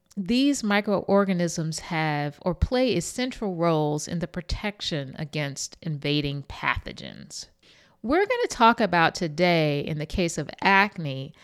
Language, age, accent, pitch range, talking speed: English, 50-69, American, 165-215 Hz, 125 wpm